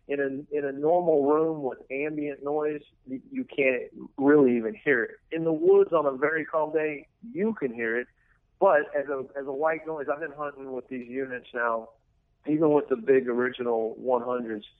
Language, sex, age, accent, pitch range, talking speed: English, male, 40-59, American, 120-150 Hz, 185 wpm